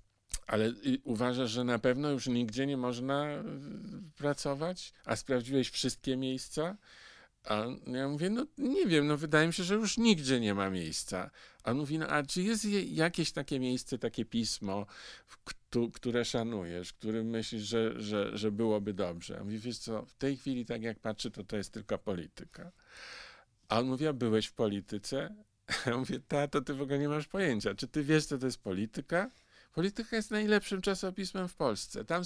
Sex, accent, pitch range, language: male, native, 115-170 Hz, Polish